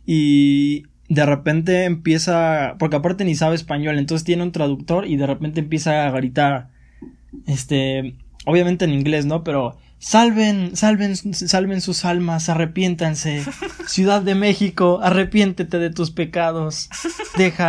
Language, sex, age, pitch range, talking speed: Spanish, male, 20-39, 145-180 Hz, 130 wpm